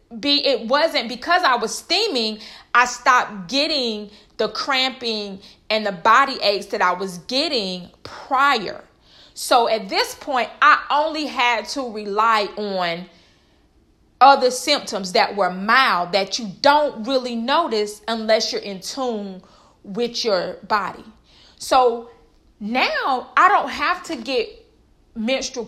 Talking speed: 130 wpm